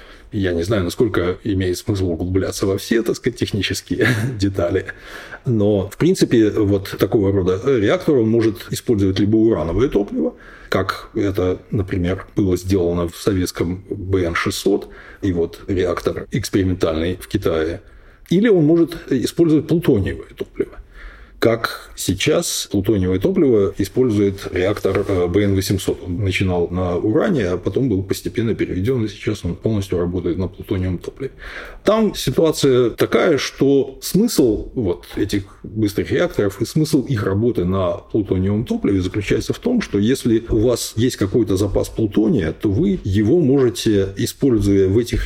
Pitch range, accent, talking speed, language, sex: 95-115 Hz, native, 140 wpm, Russian, male